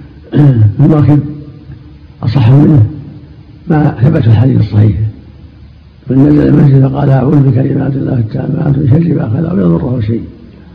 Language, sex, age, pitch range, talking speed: Arabic, male, 60-79, 115-150 Hz, 110 wpm